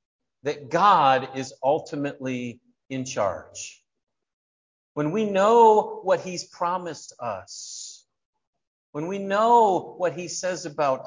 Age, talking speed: 50-69, 110 wpm